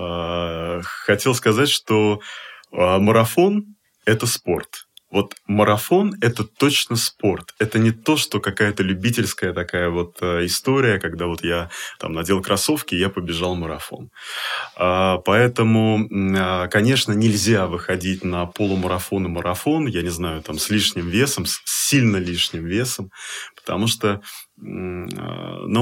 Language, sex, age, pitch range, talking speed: Russian, male, 20-39, 90-115 Hz, 125 wpm